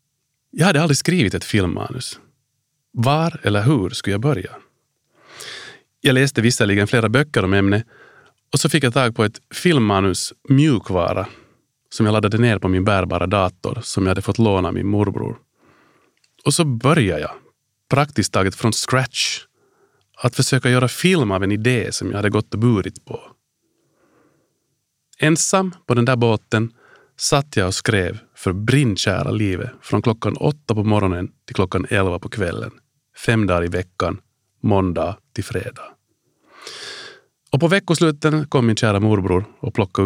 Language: Swedish